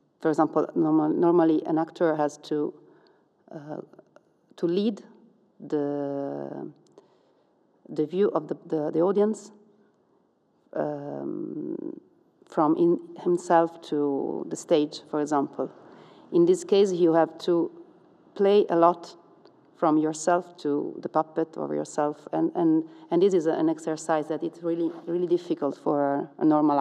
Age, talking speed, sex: 40-59, 130 wpm, female